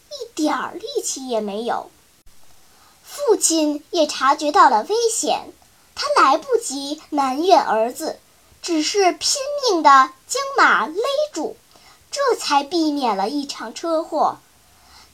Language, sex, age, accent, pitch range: Chinese, male, 10-29, native, 290-405 Hz